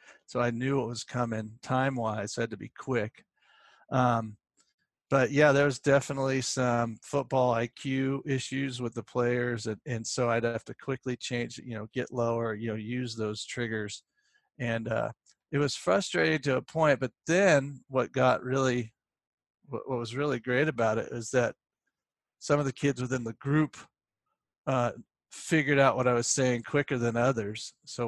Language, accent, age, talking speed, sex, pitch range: English, American, 40-59, 175 wpm, male, 115-135 Hz